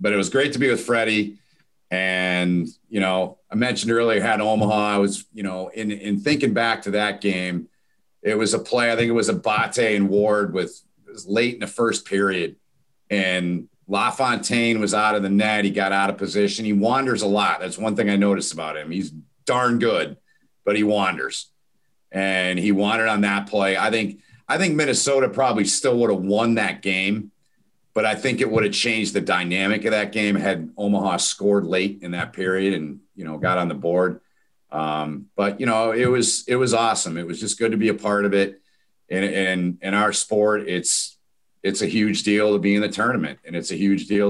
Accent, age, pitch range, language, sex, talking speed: American, 50-69, 95-110 Hz, English, male, 215 wpm